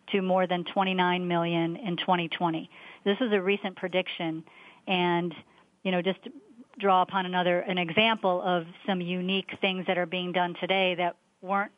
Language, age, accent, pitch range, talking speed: English, 40-59, American, 175-195 Hz, 170 wpm